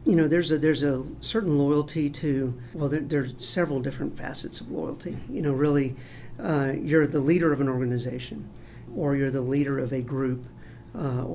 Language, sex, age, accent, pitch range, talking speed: English, male, 50-69, American, 130-150 Hz, 185 wpm